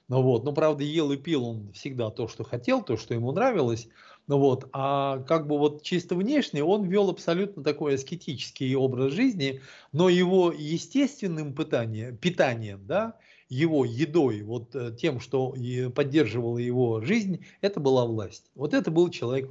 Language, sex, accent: Russian, male, native